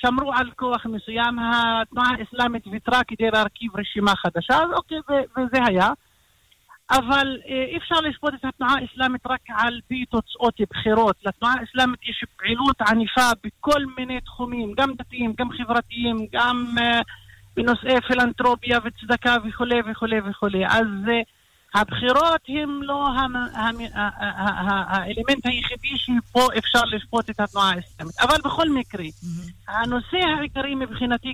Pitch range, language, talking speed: 220-260 Hz, Hebrew, 125 wpm